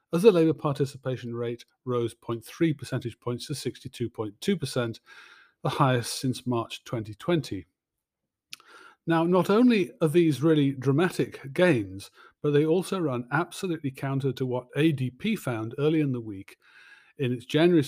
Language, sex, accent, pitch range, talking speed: English, male, British, 125-165 Hz, 135 wpm